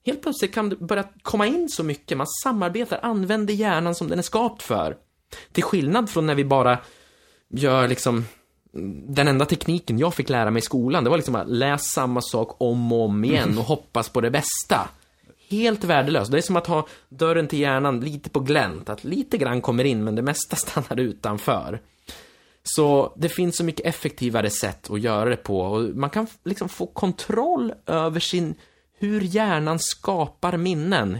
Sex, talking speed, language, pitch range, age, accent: male, 185 wpm, Swedish, 130-180 Hz, 20-39, native